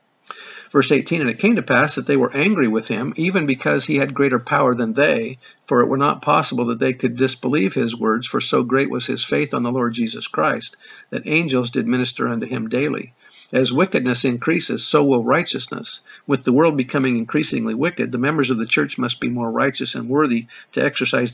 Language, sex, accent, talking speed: English, male, American, 210 wpm